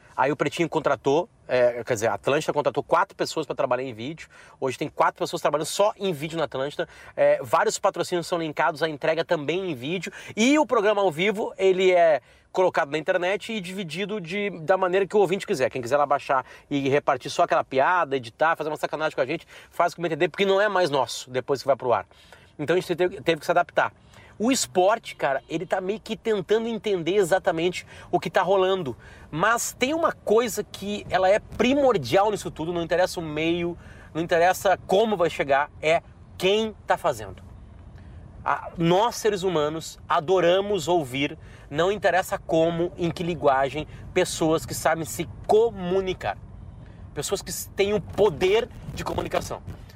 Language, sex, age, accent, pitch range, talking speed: Portuguese, male, 30-49, Brazilian, 145-195 Hz, 185 wpm